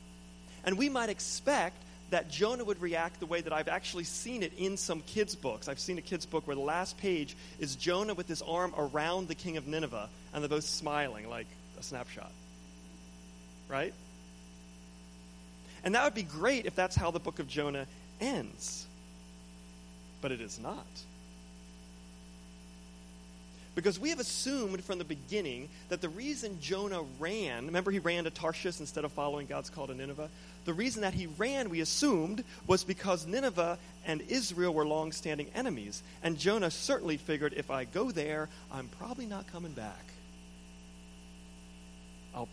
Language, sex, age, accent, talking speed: English, male, 30-49, American, 165 wpm